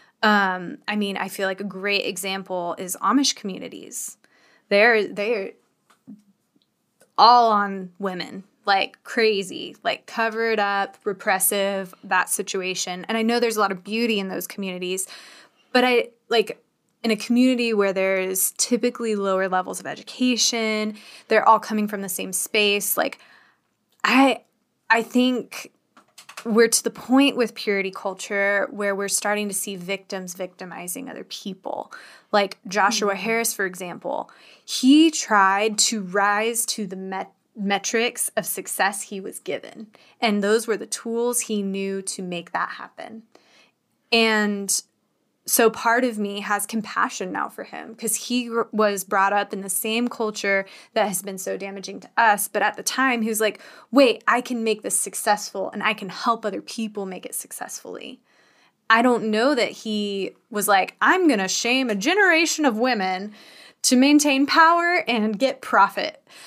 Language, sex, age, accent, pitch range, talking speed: English, female, 10-29, American, 195-235 Hz, 155 wpm